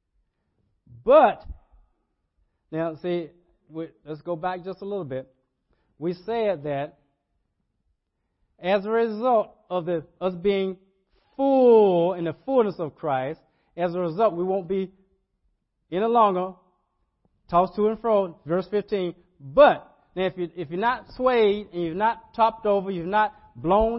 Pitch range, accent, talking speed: 170-215 Hz, American, 145 wpm